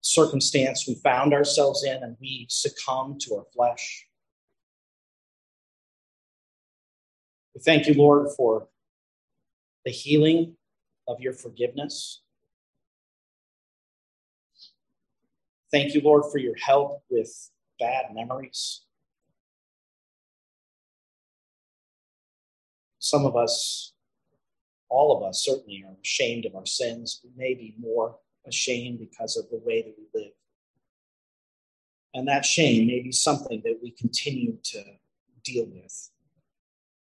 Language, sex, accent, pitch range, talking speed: English, male, American, 125-160 Hz, 110 wpm